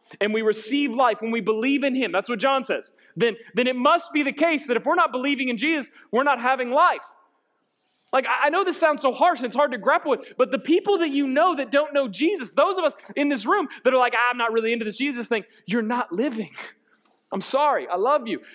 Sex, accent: male, American